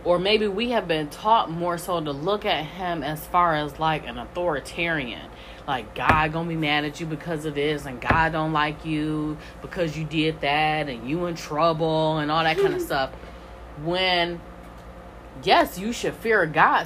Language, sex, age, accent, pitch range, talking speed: English, female, 10-29, American, 155-185 Hz, 190 wpm